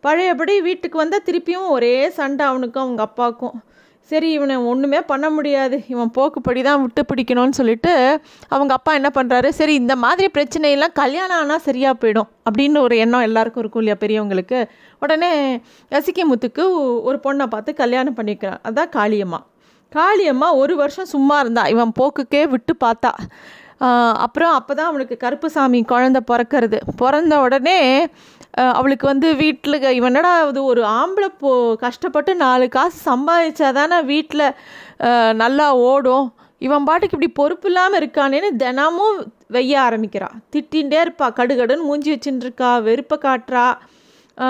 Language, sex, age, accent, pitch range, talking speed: Tamil, female, 30-49, native, 250-315 Hz, 135 wpm